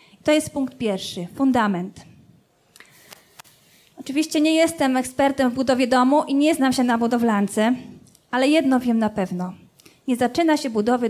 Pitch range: 235-295 Hz